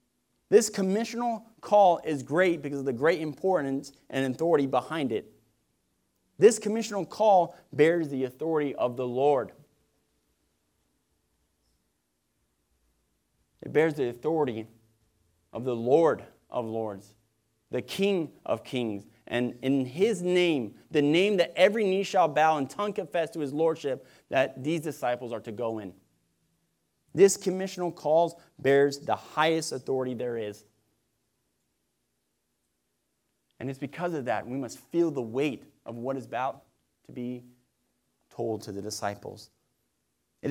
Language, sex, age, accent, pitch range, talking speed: English, male, 30-49, American, 110-155 Hz, 135 wpm